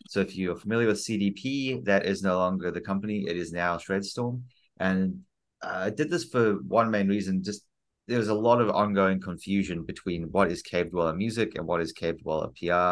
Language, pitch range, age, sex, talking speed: English, 85-105 Hz, 30-49, male, 205 wpm